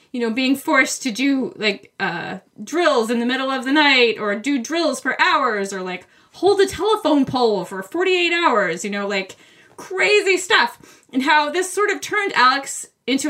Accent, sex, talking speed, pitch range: American, female, 190 wpm, 205-285 Hz